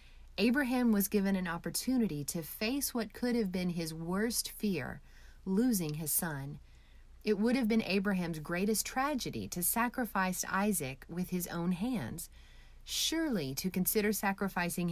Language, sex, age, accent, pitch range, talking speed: English, female, 30-49, American, 140-205 Hz, 140 wpm